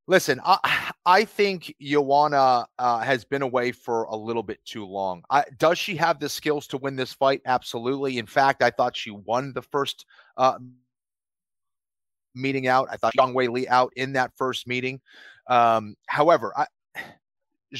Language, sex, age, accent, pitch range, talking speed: English, male, 30-49, American, 125-160 Hz, 170 wpm